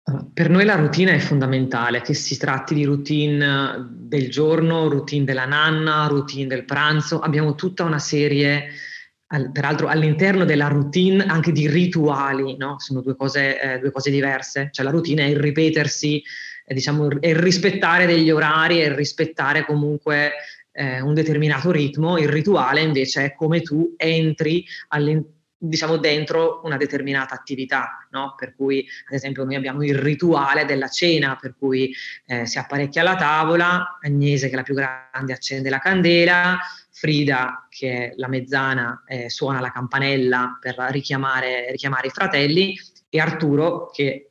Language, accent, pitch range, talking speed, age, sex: Italian, native, 135-155 Hz, 155 wpm, 20-39, female